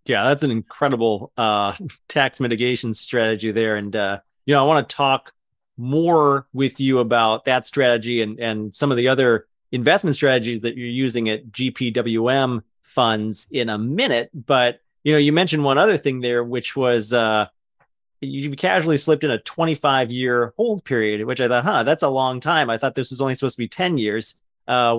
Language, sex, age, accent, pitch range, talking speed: English, male, 30-49, American, 115-140 Hz, 190 wpm